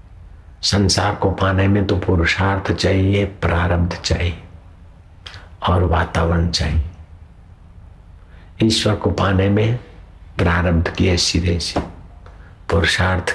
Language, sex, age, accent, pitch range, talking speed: Hindi, male, 60-79, native, 85-95 Hz, 90 wpm